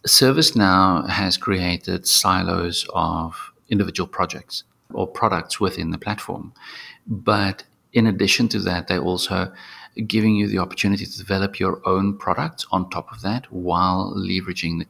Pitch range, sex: 90-105 Hz, male